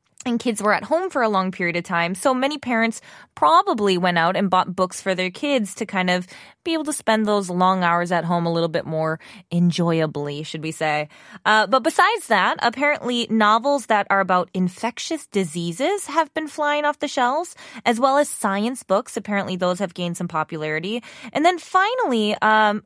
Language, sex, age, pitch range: Korean, female, 20-39, 180-245 Hz